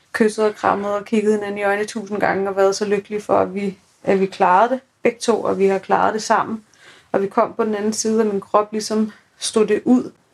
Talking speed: 245 wpm